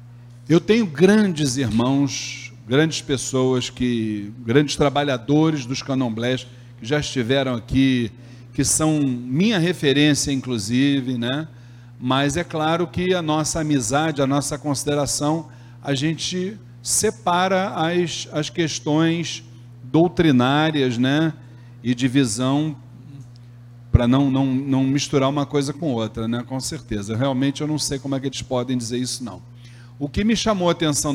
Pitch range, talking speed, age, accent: 120-150 Hz, 135 wpm, 40-59, Brazilian